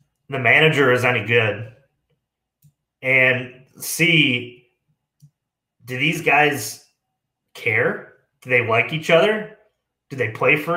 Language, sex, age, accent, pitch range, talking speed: English, male, 30-49, American, 120-155 Hz, 110 wpm